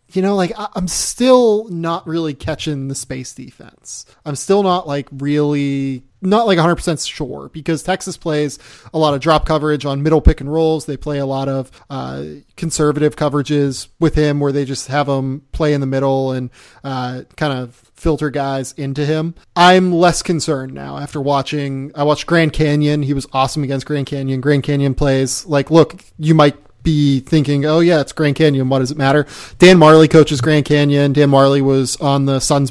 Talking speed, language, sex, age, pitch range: 195 wpm, English, male, 30-49, 135-155 Hz